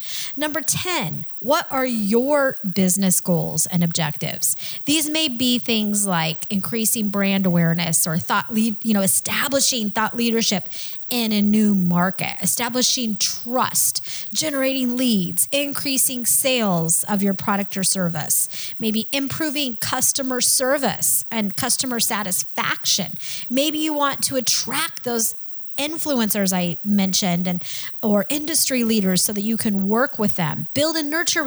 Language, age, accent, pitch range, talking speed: English, 30-49, American, 195-265 Hz, 135 wpm